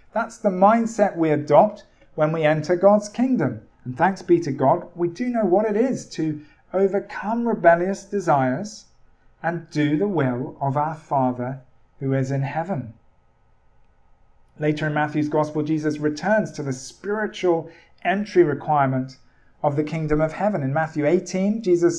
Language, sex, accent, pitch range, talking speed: English, male, British, 145-200 Hz, 155 wpm